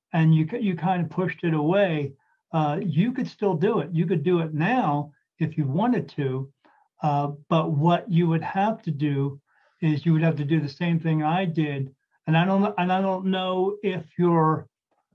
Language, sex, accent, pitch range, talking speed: English, male, American, 155-190 Hz, 200 wpm